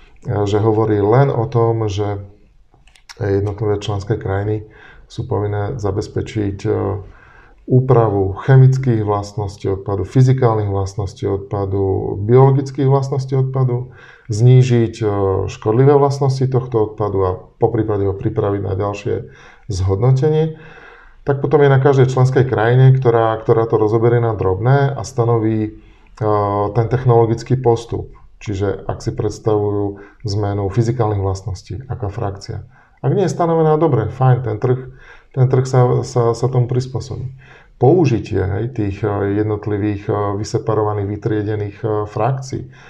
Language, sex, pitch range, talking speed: Slovak, male, 105-125 Hz, 115 wpm